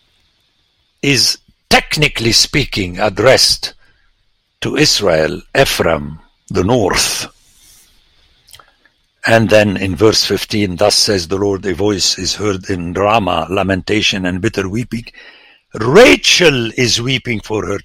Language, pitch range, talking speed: English, 90-115 Hz, 110 wpm